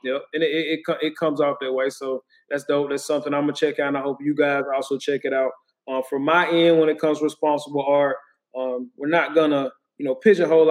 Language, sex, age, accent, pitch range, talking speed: English, male, 20-39, American, 140-155 Hz, 265 wpm